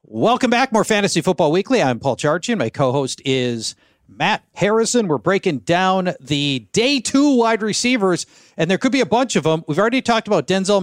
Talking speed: 200 wpm